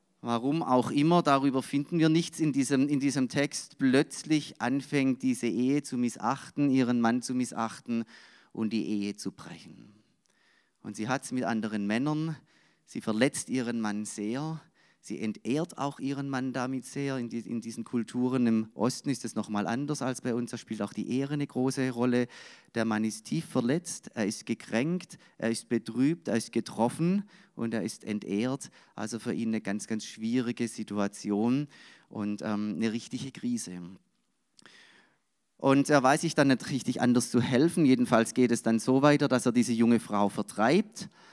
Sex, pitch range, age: male, 110-135 Hz, 30-49